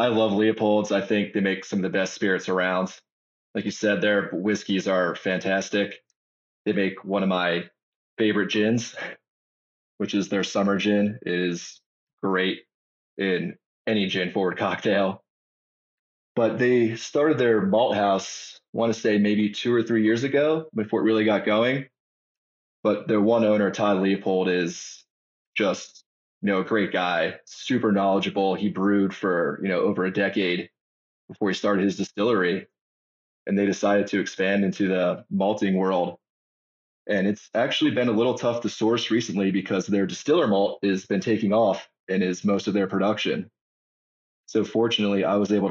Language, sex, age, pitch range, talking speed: English, male, 20-39, 95-110 Hz, 165 wpm